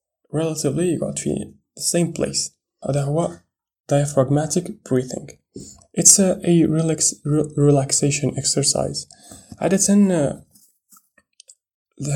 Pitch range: 130-155 Hz